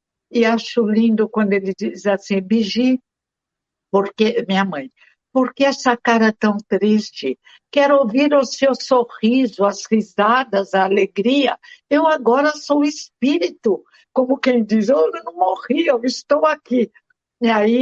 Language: Portuguese